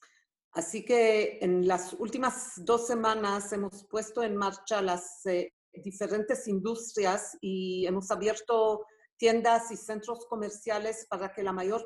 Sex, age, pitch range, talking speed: female, 50-69, 185-230 Hz, 125 wpm